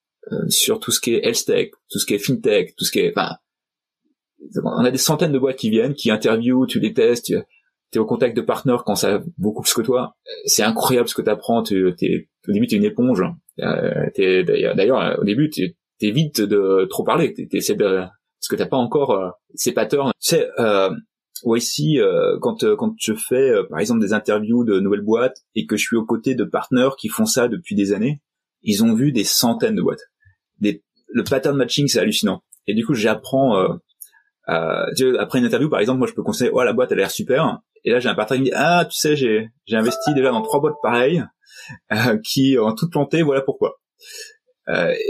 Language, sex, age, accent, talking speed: French, male, 30-49, French, 235 wpm